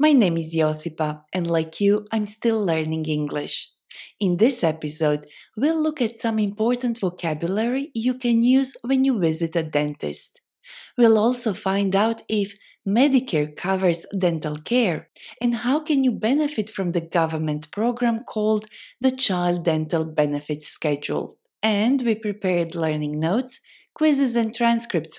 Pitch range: 150-230 Hz